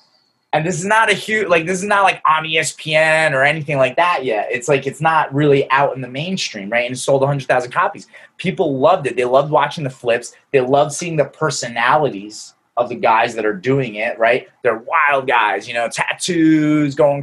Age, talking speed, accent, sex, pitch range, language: 20-39, 220 wpm, American, male, 120-160 Hz, English